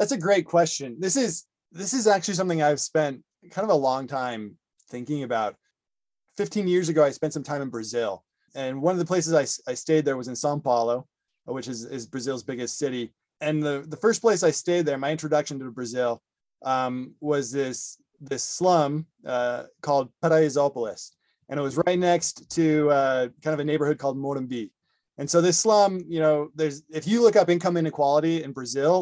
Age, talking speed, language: 20-39, 195 wpm, English